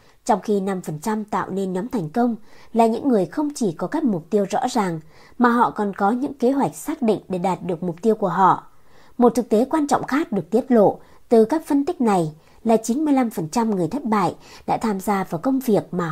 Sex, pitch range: male, 185-250 Hz